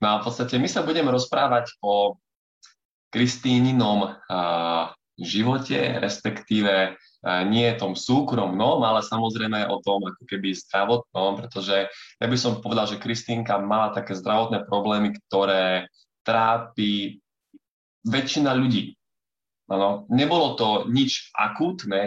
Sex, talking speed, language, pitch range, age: male, 115 wpm, Slovak, 100-125 Hz, 20-39